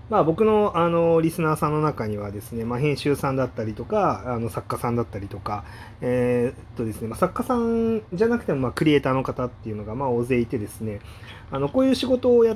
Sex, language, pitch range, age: male, Japanese, 110-150 Hz, 30-49